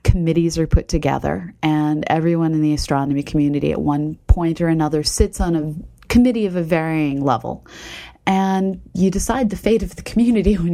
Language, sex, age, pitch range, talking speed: English, female, 30-49, 150-180 Hz, 180 wpm